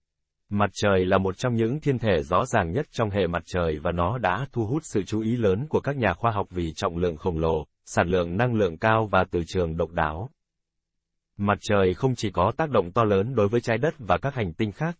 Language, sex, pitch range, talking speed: Vietnamese, male, 85-115 Hz, 250 wpm